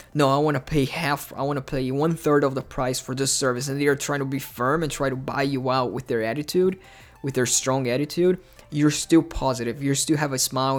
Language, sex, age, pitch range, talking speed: English, male, 20-39, 130-150 Hz, 255 wpm